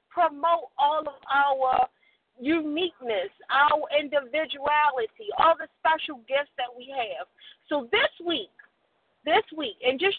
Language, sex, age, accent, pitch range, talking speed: English, female, 40-59, American, 260-360 Hz, 125 wpm